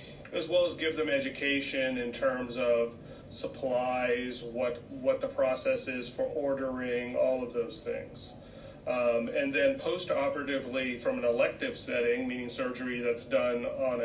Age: 30-49